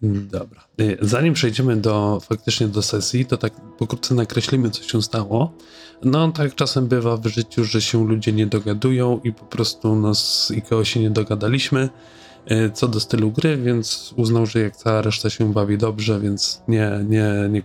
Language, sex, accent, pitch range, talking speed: Polish, male, native, 105-125 Hz, 175 wpm